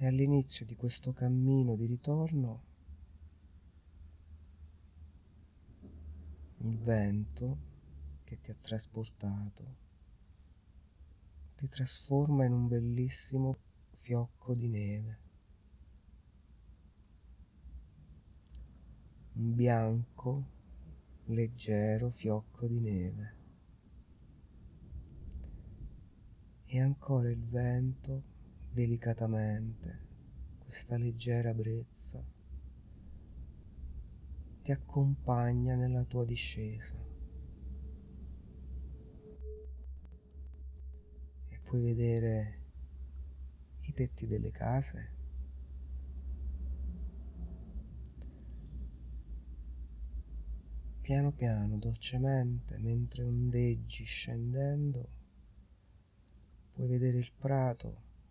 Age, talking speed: 40-59, 60 wpm